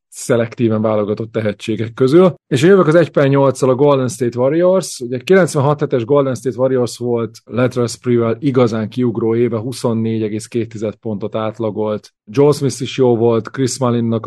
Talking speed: 145 wpm